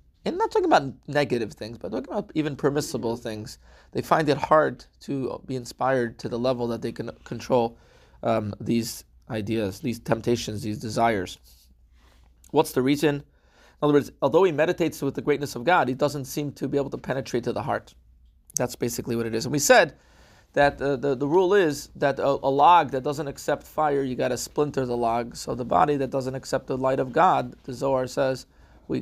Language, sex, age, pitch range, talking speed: English, male, 30-49, 110-145 Hz, 210 wpm